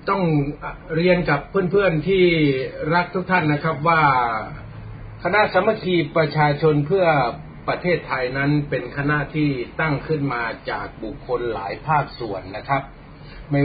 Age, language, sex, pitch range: 30-49, Thai, male, 135-160 Hz